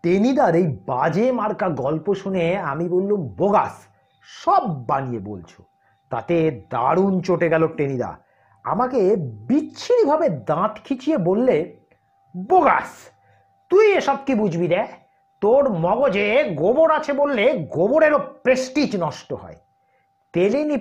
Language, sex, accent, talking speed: Bengali, male, native, 110 wpm